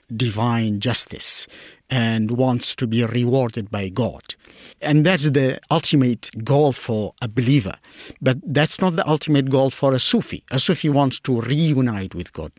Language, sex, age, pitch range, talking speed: English, male, 50-69, 110-135 Hz, 155 wpm